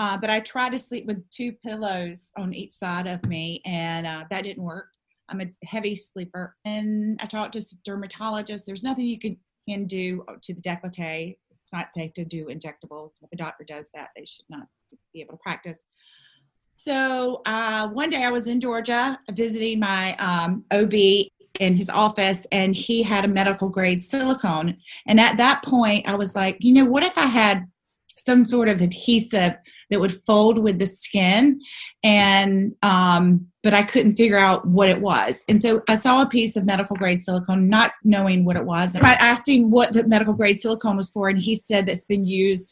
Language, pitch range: English, 180-225 Hz